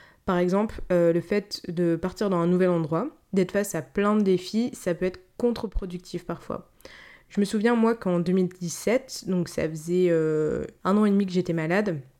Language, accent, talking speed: French, French, 190 wpm